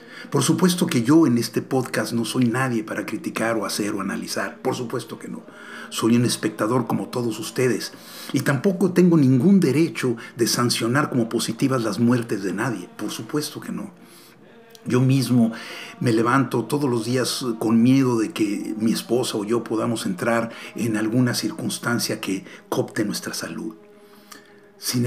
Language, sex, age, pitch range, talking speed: Spanish, male, 50-69, 115-150 Hz, 165 wpm